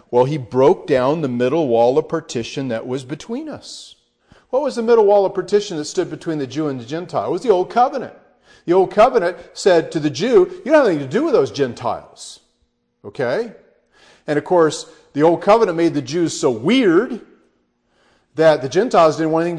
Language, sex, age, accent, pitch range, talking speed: English, male, 40-59, American, 115-180 Hz, 205 wpm